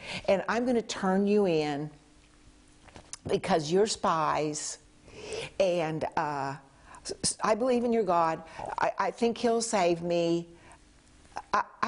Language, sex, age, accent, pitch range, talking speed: English, female, 60-79, American, 160-210 Hz, 115 wpm